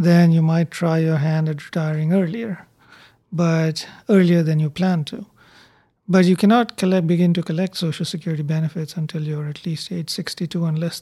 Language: English